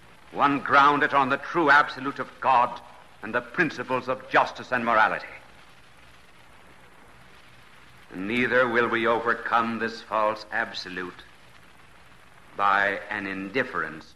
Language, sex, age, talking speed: English, male, 60-79, 110 wpm